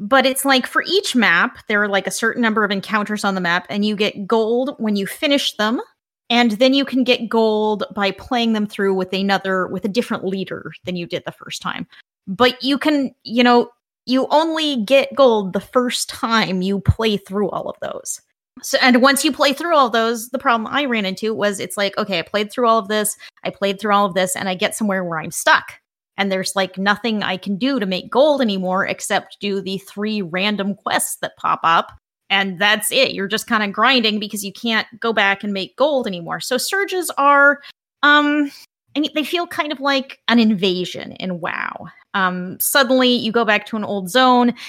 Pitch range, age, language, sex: 200-265 Hz, 20-39, English, female